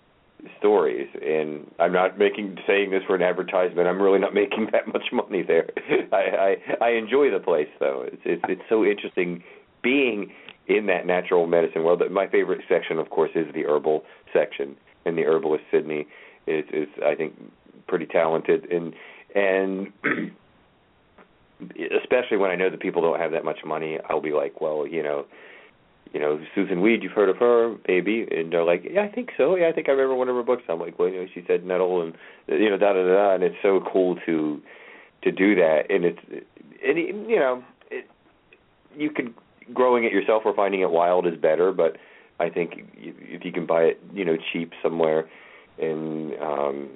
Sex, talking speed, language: male, 195 wpm, English